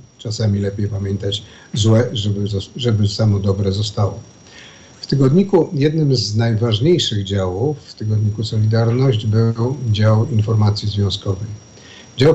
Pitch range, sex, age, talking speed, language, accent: 100-125 Hz, male, 50-69, 110 wpm, Polish, native